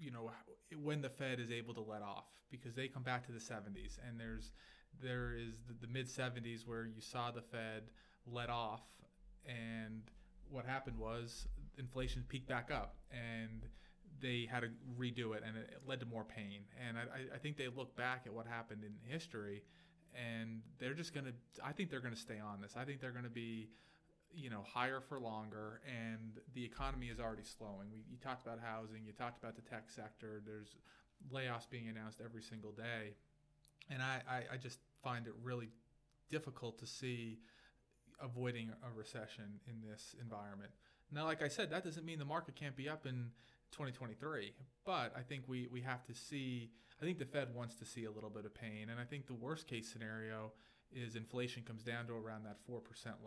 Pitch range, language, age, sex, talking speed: 110-130 Hz, English, 30-49, male, 200 wpm